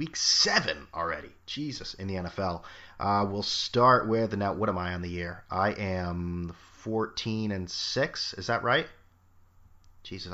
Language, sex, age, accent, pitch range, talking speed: English, male, 30-49, American, 90-110 Hz, 155 wpm